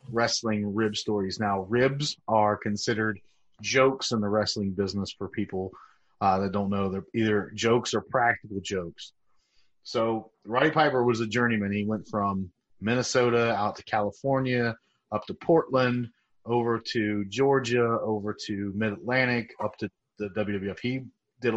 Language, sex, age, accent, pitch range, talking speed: English, male, 30-49, American, 105-120 Hz, 145 wpm